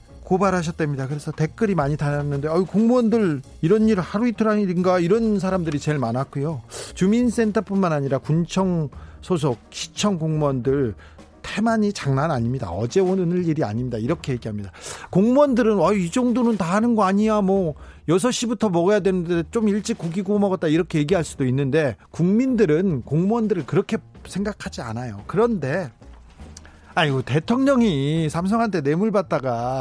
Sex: male